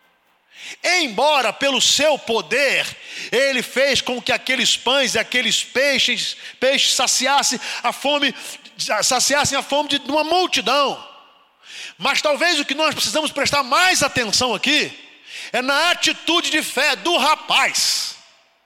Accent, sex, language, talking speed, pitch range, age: Brazilian, male, Portuguese, 120 wpm, 250-320 Hz, 50-69